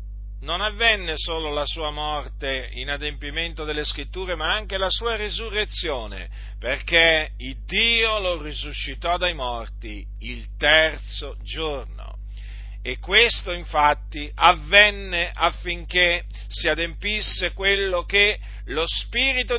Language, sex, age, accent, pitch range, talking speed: Italian, male, 50-69, native, 130-195 Hz, 110 wpm